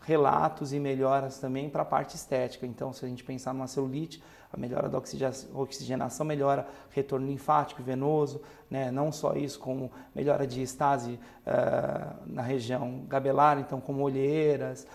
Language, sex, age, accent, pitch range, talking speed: Portuguese, male, 40-59, Brazilian, 130-145 Hz, 155 wpm